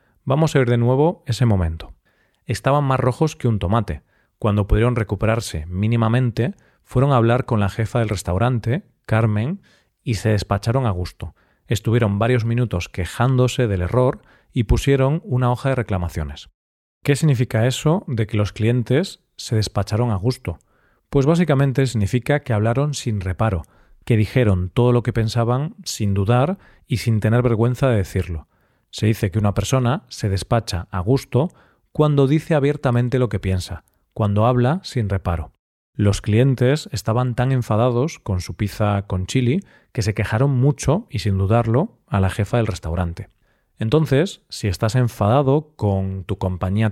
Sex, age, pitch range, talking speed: male, 40-59, 105-135 Hz, 155 wpm